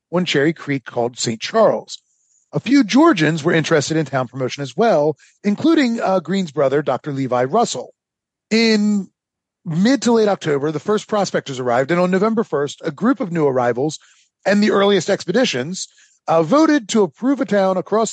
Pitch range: 155-215 Hz